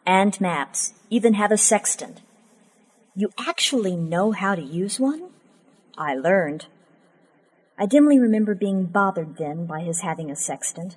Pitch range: 175-225 Hz